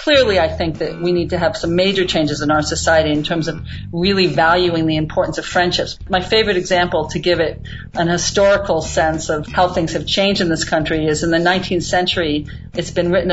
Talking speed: 215 wpm